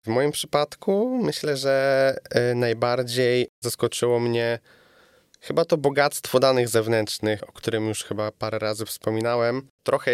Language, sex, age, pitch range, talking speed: Polish, male, 20-39, 115-130 Hz, 125 wpm